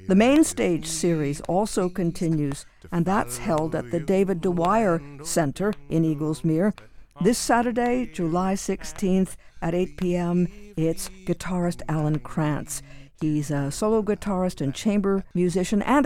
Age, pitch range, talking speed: 60-79, 155-195 Hz, 130 wpm